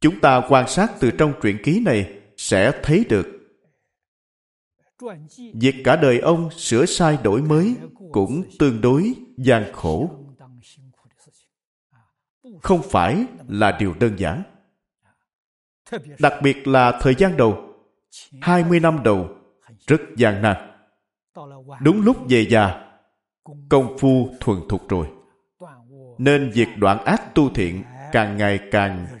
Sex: male